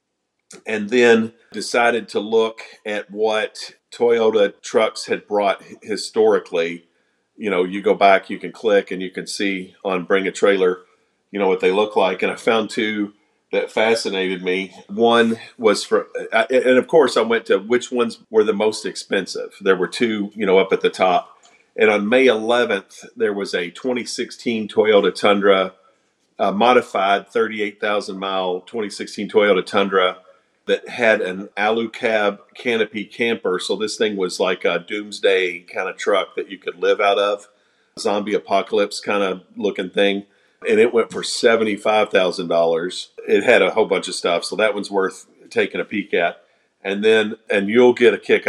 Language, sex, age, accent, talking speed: English, male, 40-59, American, 170 wpm